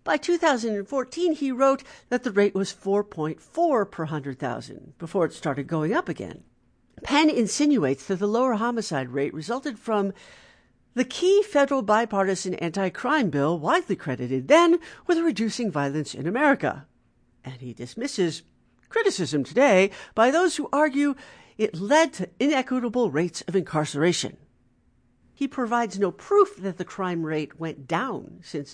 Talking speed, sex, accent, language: 140 wpm, female, American, English